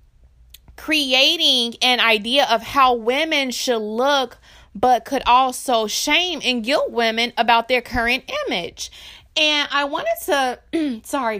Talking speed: 125 wpm